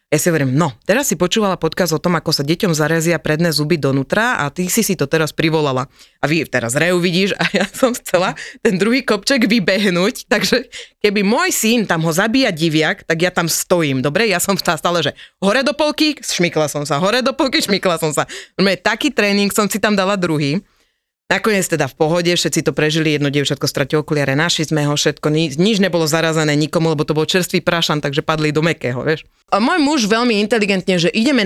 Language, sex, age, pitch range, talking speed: Slovak, female, 30-49, 155-210 Hz, 210 wpm